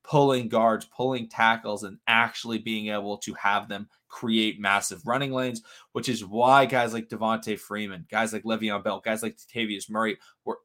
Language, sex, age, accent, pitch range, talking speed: English, male, 20-39, American, 105-140 Hz, 175 wpm